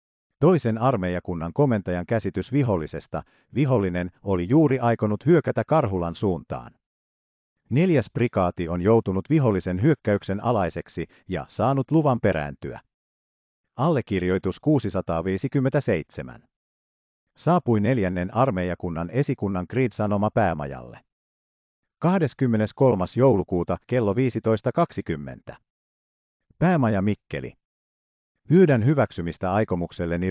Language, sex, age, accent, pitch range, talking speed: Finnish, male, 50-69, native, 85-130 Hz, 80 wpm